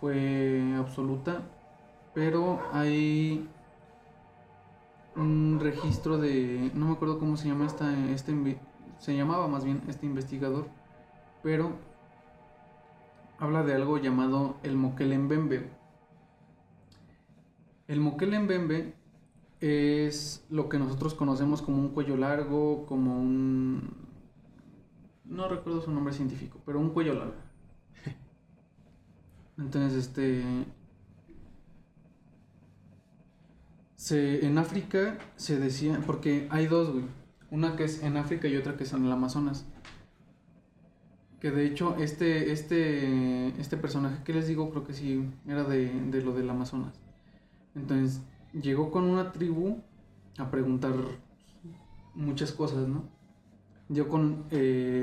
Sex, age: male, 20-39